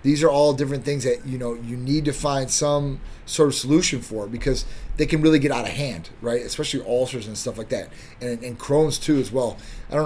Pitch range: 130-165 Hz